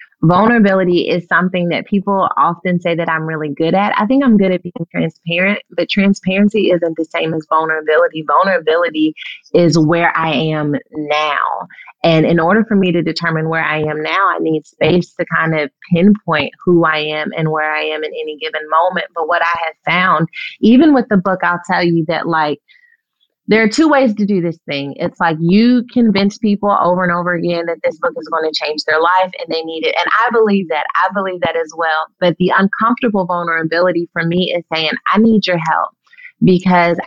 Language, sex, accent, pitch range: English, female, American, 160-185 Hz